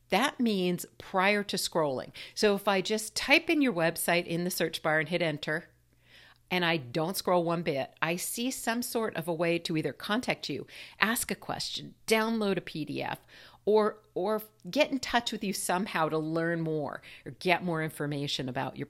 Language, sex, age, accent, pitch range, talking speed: English, female, 50-69, American, 145-195 Hz, 190 wpm